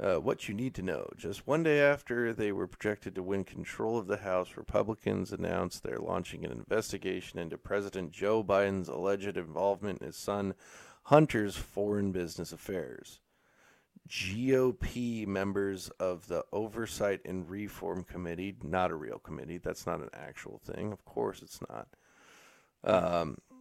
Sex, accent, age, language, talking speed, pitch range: male, American, 40-59, English, 150 wpm, 95-110 Hz